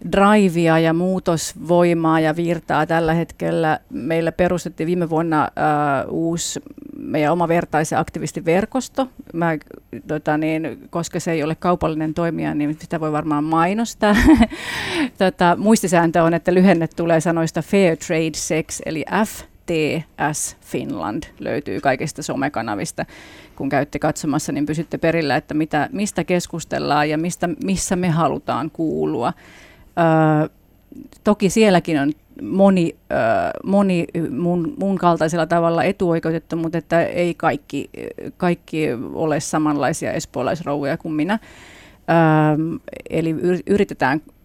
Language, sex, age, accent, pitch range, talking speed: Finnish, female, 30-49, native, 155-180 Hz, 110 wpm